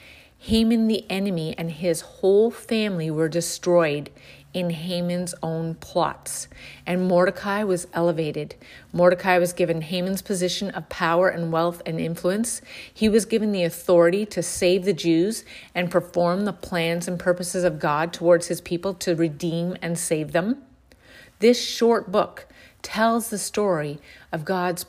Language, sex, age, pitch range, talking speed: English, female, 40-59, 170-200 Hz, 145 wpm